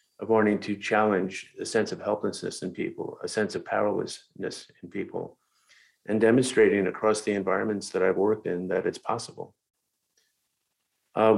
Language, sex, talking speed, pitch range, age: English, male, 155 wpm, 95-110 Hz, 50-69